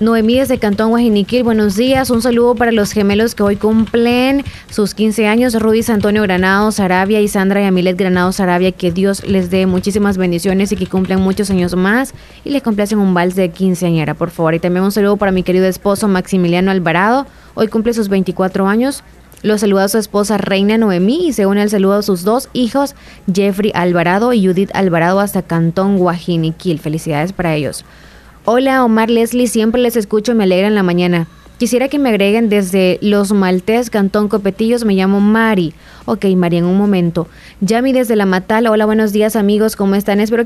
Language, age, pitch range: Spanish, 20-39, 185-225 Hz